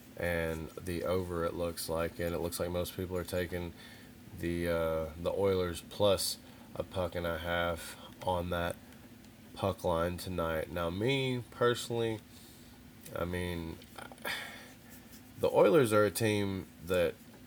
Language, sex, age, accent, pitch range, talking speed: English, male, 20-39, American, 85-100 Hz, 135 wpm